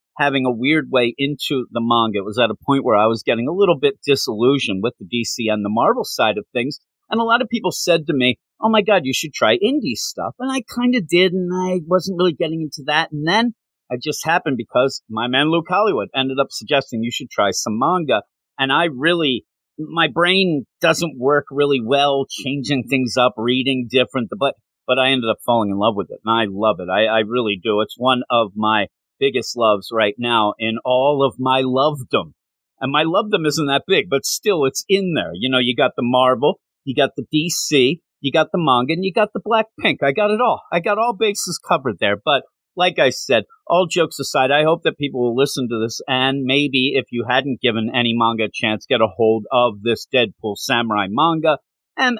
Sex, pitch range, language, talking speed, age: male, 120-170 Hz, English, 225 wpm, 40-59